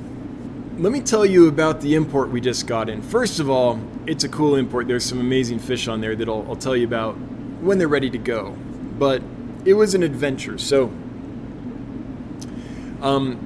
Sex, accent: male, American